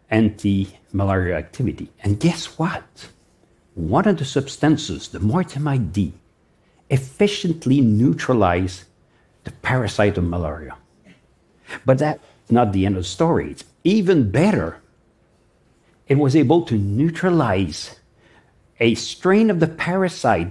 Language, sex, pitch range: Korean, male, 105-155 Hz